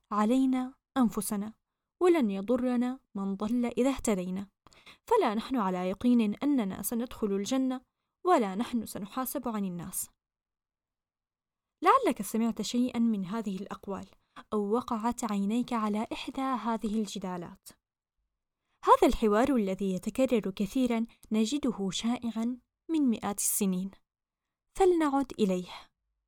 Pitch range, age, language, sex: 205-255 Hz, 10-29, Arabic, female